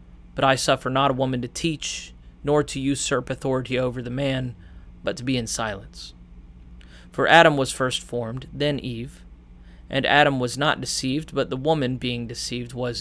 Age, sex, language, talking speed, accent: 30-49, male, English, 175 wpm, American